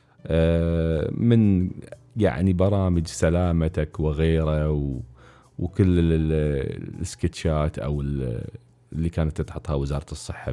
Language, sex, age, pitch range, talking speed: Arabic, male, 30-49, 75-90 Hz, 80 wpm